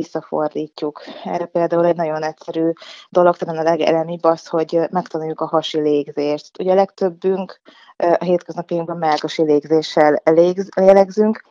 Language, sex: Hungarian, female